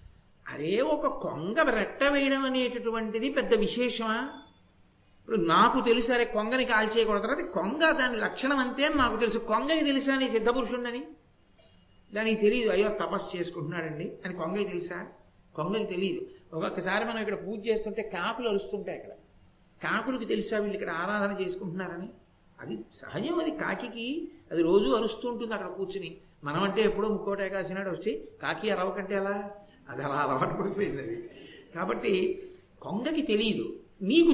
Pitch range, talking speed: 195-280 Hz, 135 wpm